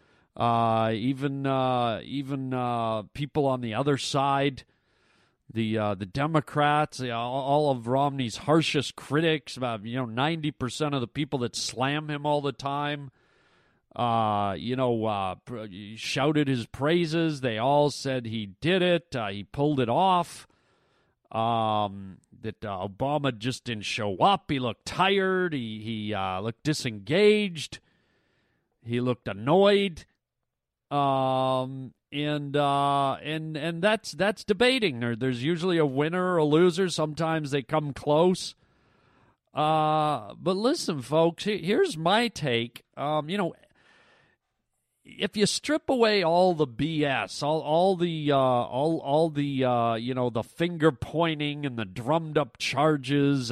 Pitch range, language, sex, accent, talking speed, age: 120-155 Hz, English, male, American, 140 wpm, 40-59